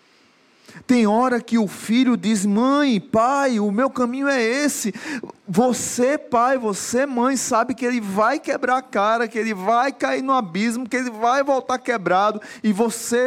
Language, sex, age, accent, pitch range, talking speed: Portuguese, male, 20-39, Brazilian, 205-255 Hz, 165 wpm